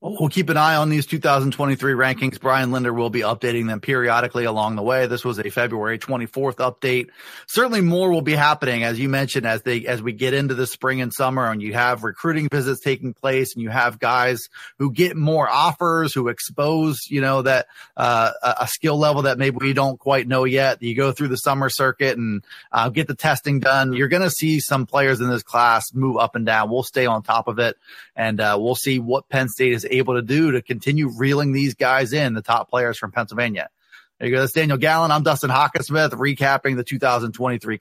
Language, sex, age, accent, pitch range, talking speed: English, male, 30-49, American, 120-145 Hz, 220 wpm